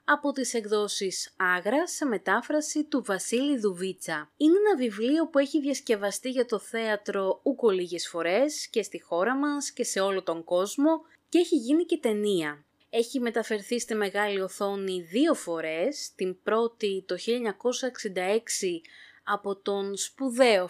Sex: female